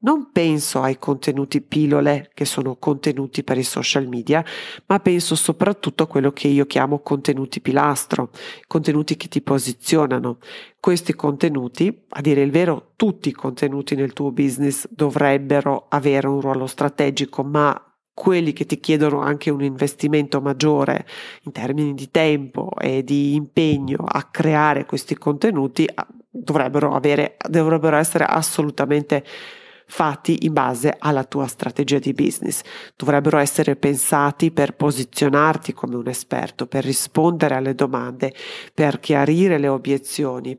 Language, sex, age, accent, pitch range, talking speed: Italian, female, 40-59, native, 140-155 Hz, 135 wpm